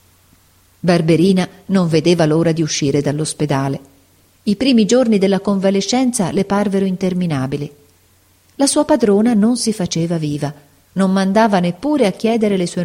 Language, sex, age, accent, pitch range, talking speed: Italian, female, 40-59, native, 150-210 Hz, 135 wpm